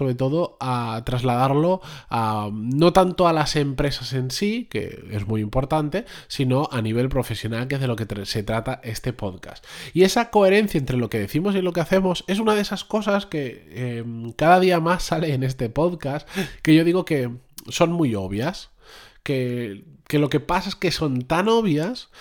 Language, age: Spanish, 20-39